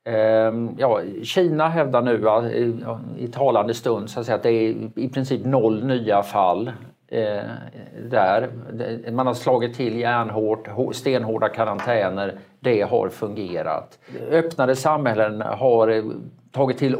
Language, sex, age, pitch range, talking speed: Swedish, male, 50-69, 105-130 Hz, 120 wpm